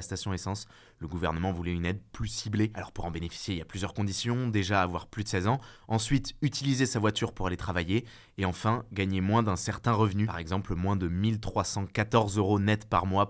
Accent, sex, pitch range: French, male, 95-110 Hz